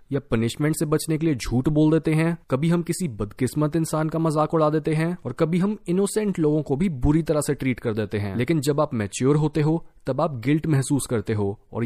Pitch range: 130-170 Hz